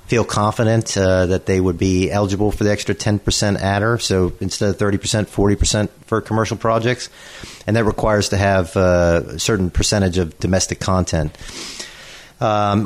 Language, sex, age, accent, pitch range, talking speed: English, male, 40-59, American, 95-115 Hz, 160 wpm